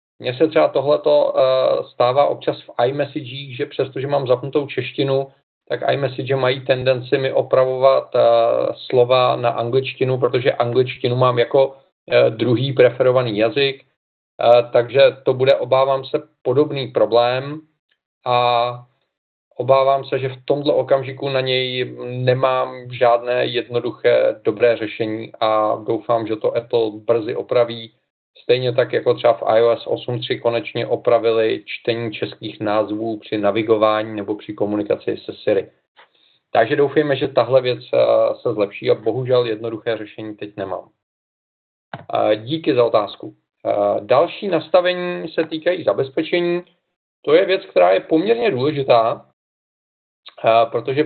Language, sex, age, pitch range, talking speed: Czech, male, 40-59, 120-145 Hz, 130 wpm